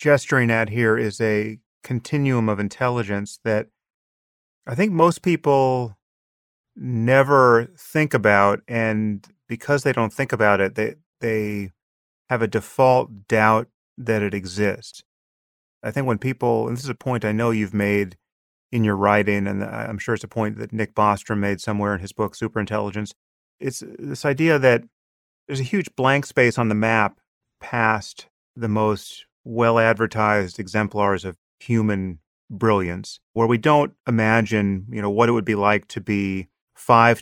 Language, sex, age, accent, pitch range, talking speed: English, male, 30-49, American, 100-120 Hz, 155 wpm